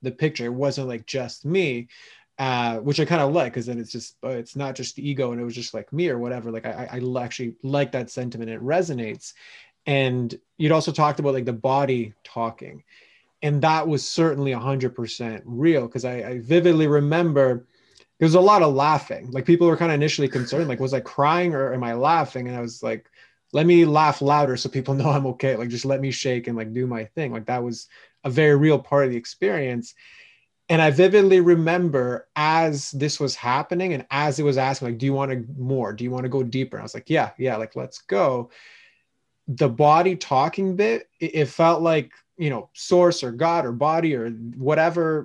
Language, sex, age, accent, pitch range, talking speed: English, male, 20-39, American, 125-155 Hz, 215 wpm